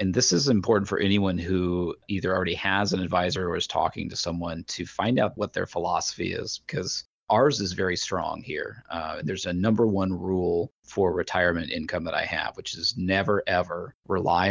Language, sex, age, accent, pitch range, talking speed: English, male, 30-49, American, 90-100 Hz, 195 wpm